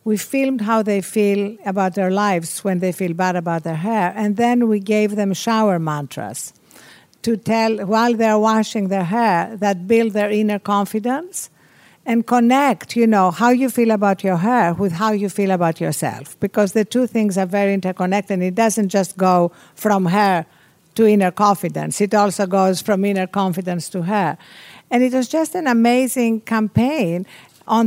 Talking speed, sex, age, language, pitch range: 175 wpm, female, 50-69, English, 185-225 Hz